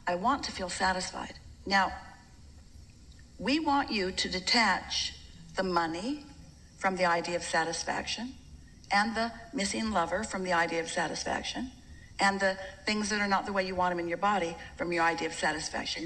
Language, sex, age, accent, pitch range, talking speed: English, female, 50-69, American, 185-275 Hz, 170 wpm